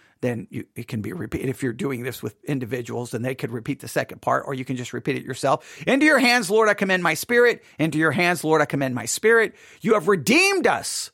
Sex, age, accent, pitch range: male, 50-69, American, 140-210 Hz